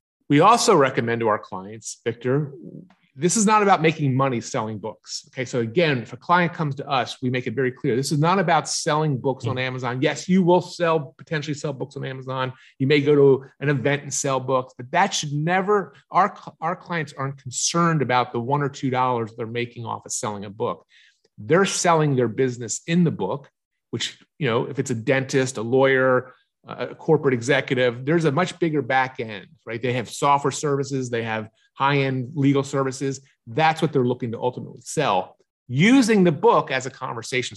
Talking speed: 200 wpm